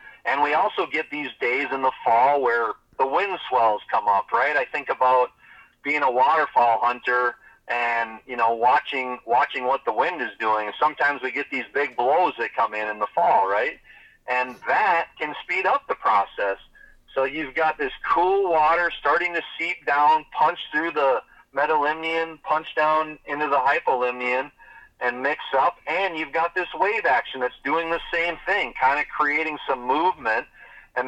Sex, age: male, 40-59